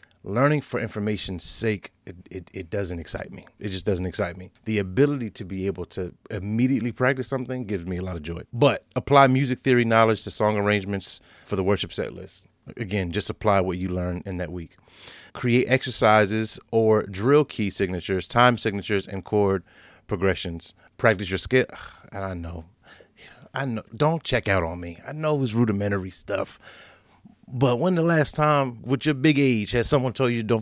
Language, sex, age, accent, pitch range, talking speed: English, male, 30-49, American, 95-135 Hz, 185 wpm